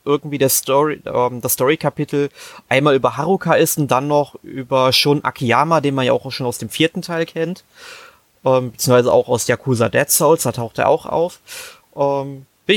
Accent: German